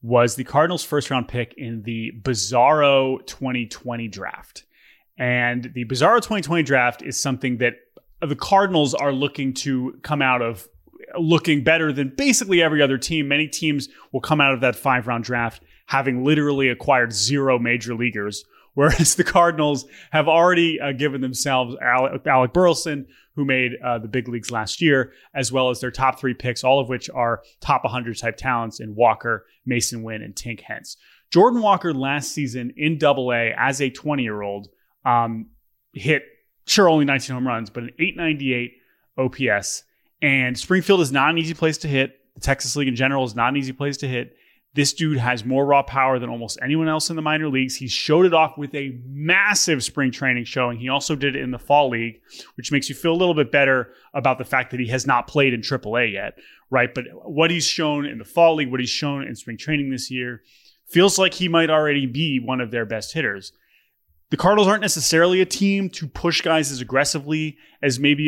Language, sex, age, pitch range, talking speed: English, male, 20-39, 125-155 Hz, 195 wpm